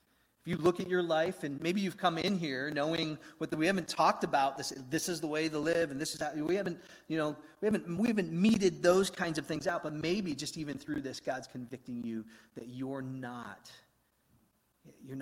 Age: 40-59